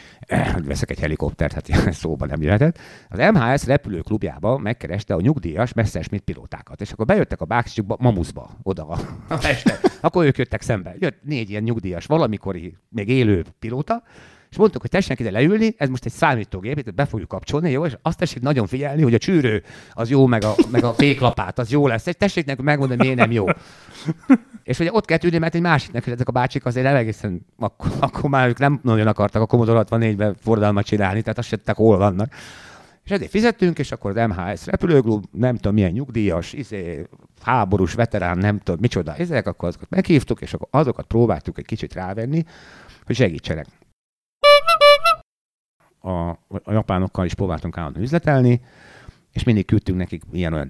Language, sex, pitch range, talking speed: Hungarian, male, 90-135 Hz, 180 wpm